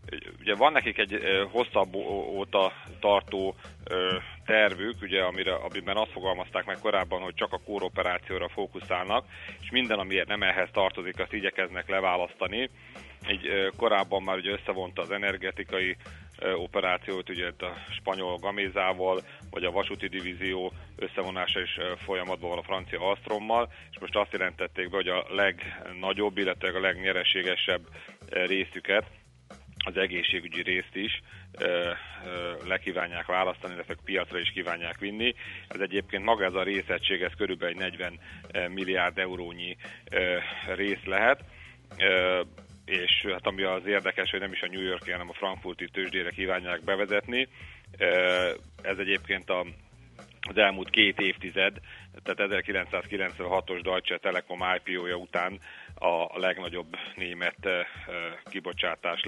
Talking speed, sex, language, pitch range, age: 120 wpm, male, Hungarian, 90-100 Hz, 40-59